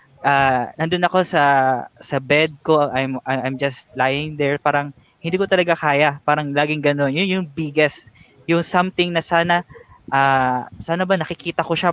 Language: Filipino